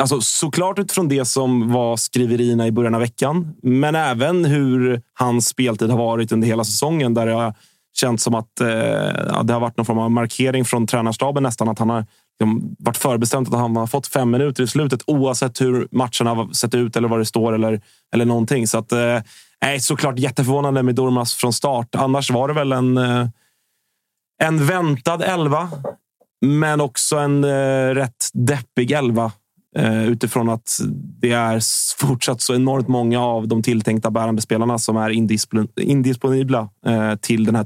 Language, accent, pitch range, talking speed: Swedish, native, 115-140 Hz, 180 wpm